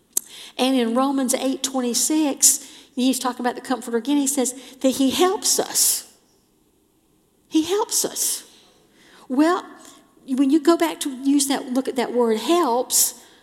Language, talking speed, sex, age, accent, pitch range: English, 145 wpm, female, 50-69, American, 225-295 Hz